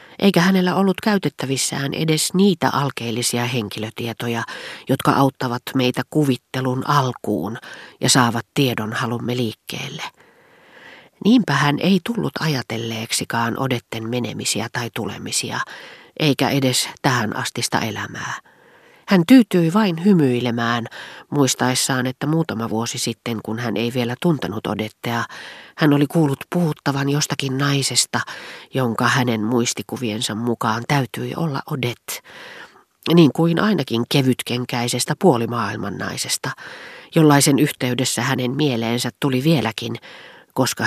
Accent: native